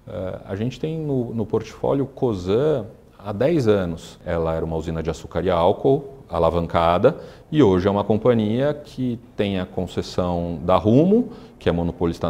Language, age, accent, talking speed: Portuguese, 40-59, Brazilian, 160 wpm